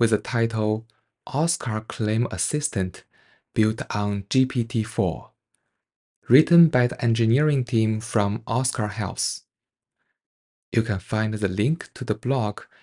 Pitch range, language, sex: 105-135 Hz, English, male